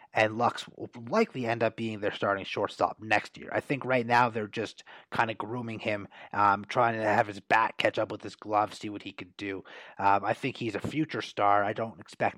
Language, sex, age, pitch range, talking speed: English, male, 30-49, 105-135 Hz, 235 wpm